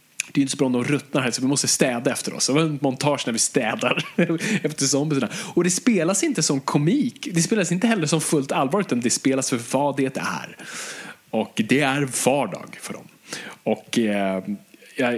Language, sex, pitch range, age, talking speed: Swedish, male, 110-145 Hz, 20-39, 215 wpm